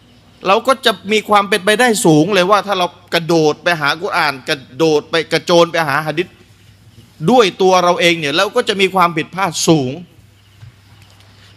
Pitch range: 115-180 Hz